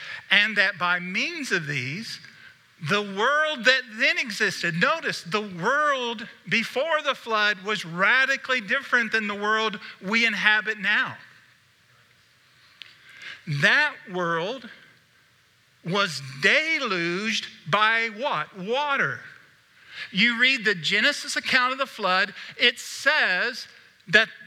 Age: 50-69